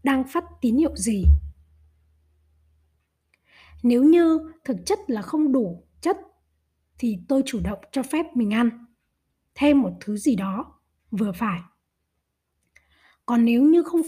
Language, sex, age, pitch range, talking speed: Vietnamese, female, 20-39, 175-280 Hz, 135 wpm